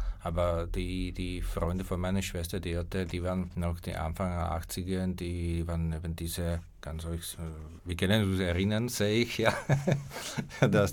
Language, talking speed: German, 165 wpm